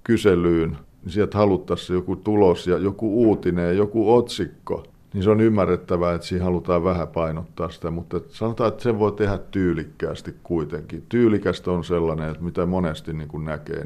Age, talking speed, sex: 50-69, 160 wpm, male